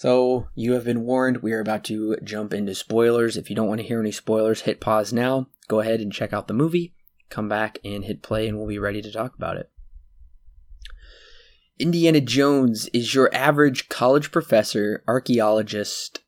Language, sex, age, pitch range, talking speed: English, male, 20-39, 105-130 Hz, 190 wpm